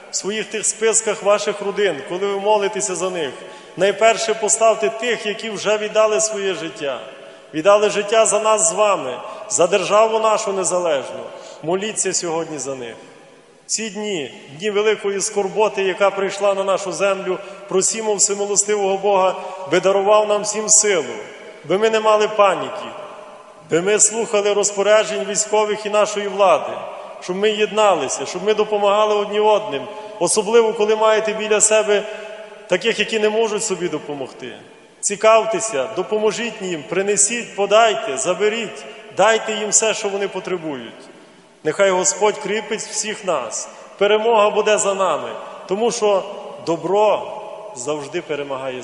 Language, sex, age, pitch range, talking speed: Ukrainian, male, 30-49, 185-215 Hz, 135 wpm